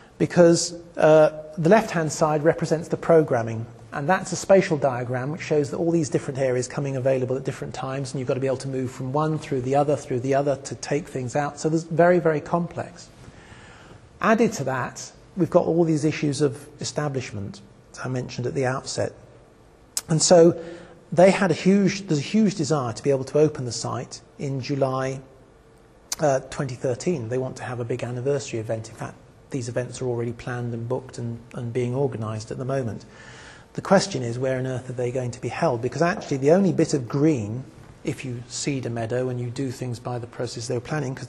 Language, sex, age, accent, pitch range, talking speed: English, male, 40-59, British, 125-160 Hz, 210 wpm